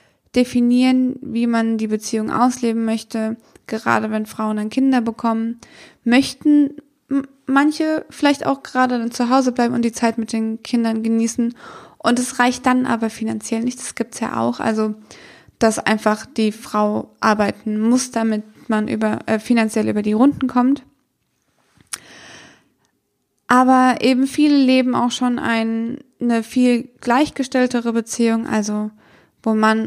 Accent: German